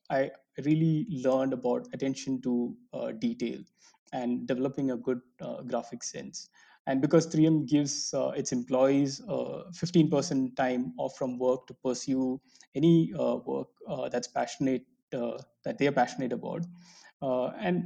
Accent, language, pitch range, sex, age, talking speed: Indian, English, 125-160 Hz, male, 20-39, 150 wpm